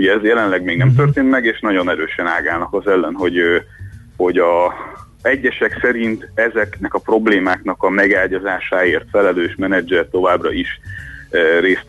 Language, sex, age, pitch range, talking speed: Hungarian, male, 30-49, 95-115 Hz, 140 wpm